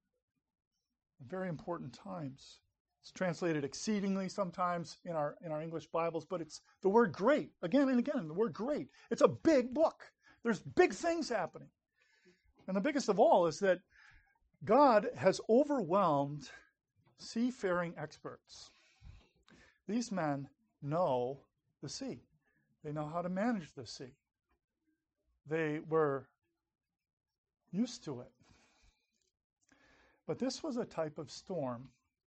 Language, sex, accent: English, male, American